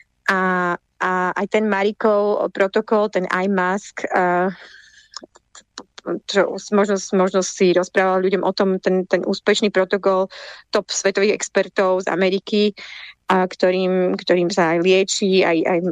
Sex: female